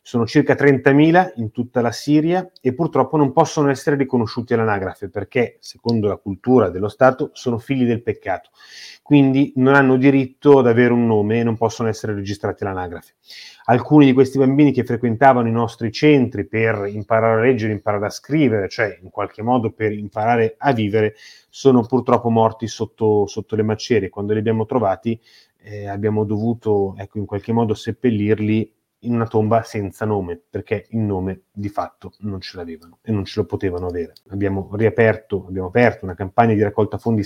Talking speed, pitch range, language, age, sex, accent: 175 wpm, 105-120 Hz, Italian, 30-49, male, native